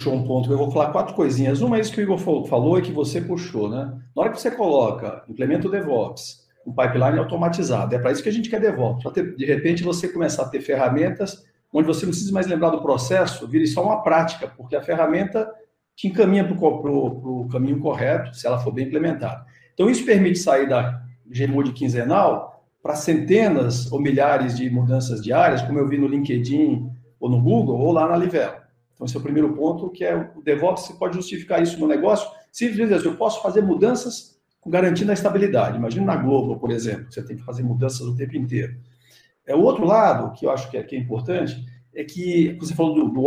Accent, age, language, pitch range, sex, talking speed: Brazilian, 50-69, Portuguese, 130-185 Hz, male, 215 wpm